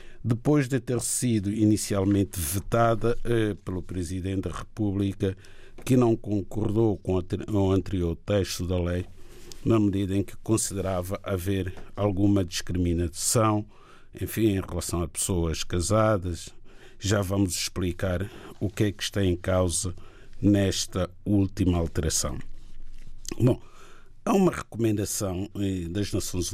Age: 50-69